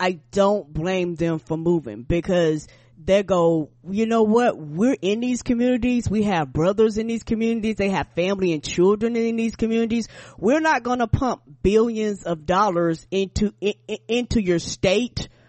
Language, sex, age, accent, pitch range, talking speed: English, female, 20-39, American, 180-230 Hz, 165 wpm